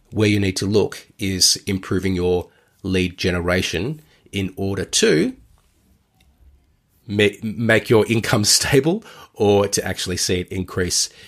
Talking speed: 120 wpm